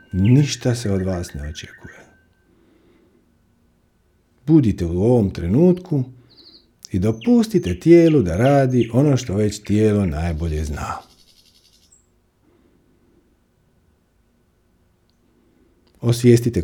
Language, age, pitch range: Croatian, 50-69, 90-125 Hz